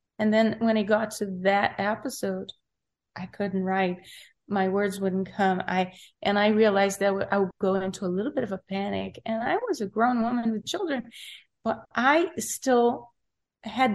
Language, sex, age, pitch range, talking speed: English, female, 30-49, 195-235 Hz, 180 wpm